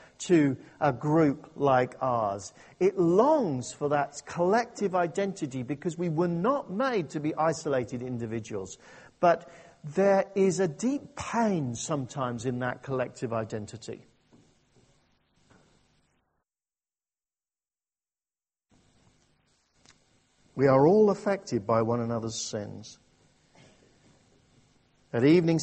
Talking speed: 95 wpm